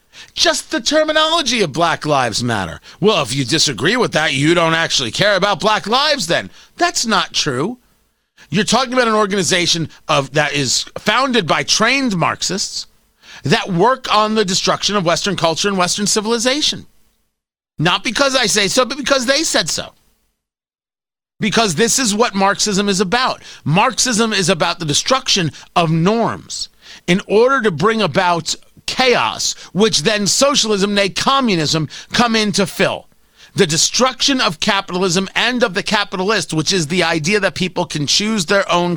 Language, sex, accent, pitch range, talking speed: English, male, American, 170-225 Hz, 160 wpm